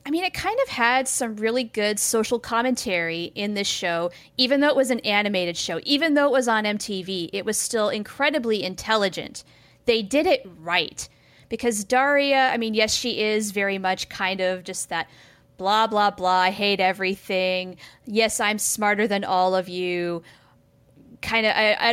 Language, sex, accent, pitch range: English, female, American, 185-250 Hz